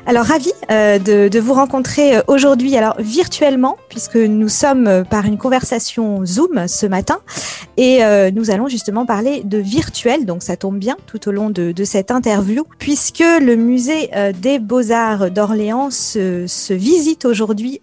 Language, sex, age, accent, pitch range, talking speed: French, female, 40-59, French, 200-255 Hz, 150 wpm